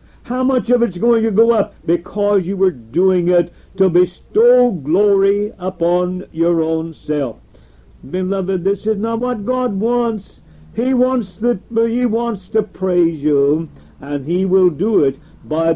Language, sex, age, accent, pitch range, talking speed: English, male, 60-79, American, 155-215 Hz, 155 wpm